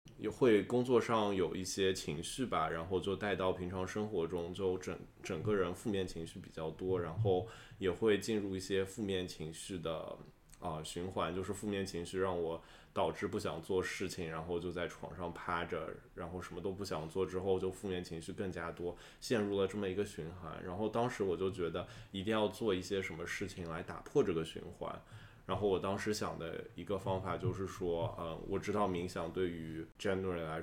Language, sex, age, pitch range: Chinese, male, 20-39, 85-100 Hz